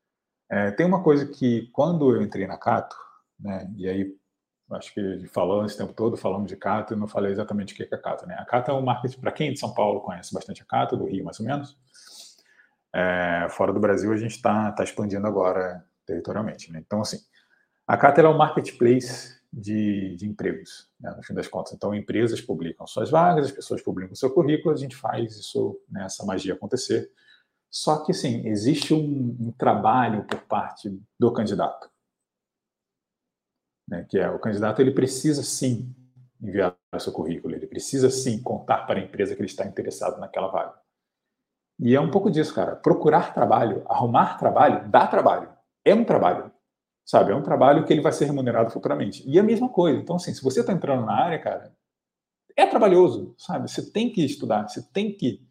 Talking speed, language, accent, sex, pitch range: 195 wpm, Portuguese, Brazilian, male, 105-145 Hz